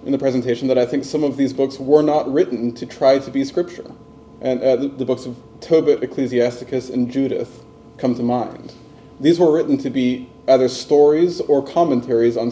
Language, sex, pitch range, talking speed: English, male, 125-145 Hz, 195 wpm